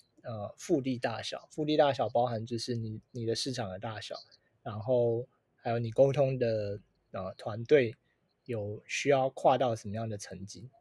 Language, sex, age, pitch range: Chinese, male, 20-39, 115-140 Hz